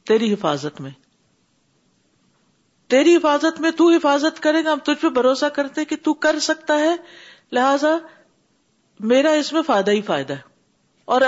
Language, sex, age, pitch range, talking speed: Urdu, female, 50-69, 210-310 Hz, 155 wpm